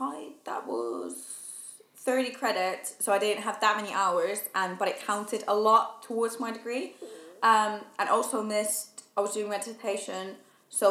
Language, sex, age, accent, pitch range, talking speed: English, female, 20-39, British, 190-230 Hz, 165 wpm